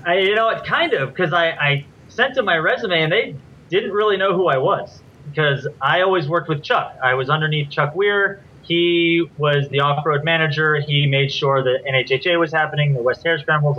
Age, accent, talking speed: 30-49, American, 210 wpm